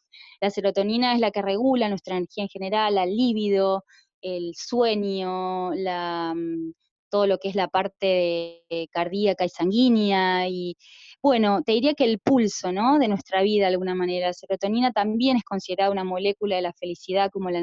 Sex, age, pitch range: female, 20-39, 185-235 Hz